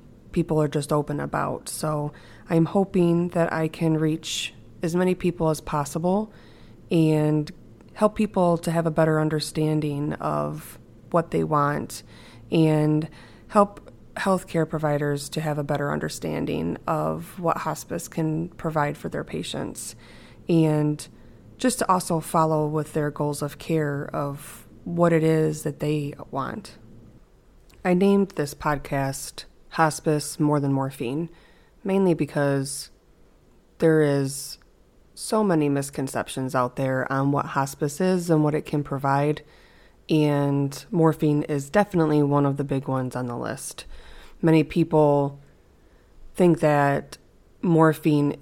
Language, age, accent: English, 20-39, American